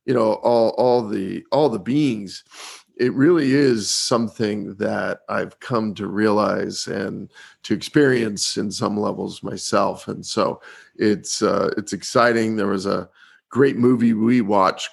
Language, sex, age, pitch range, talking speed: English, male, 40-59, 105-125 Hz, 150 wpm